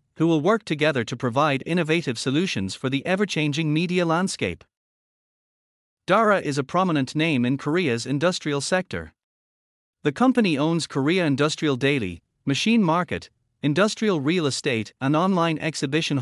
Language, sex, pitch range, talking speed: English, male, 130-180 Hz, 135 wpm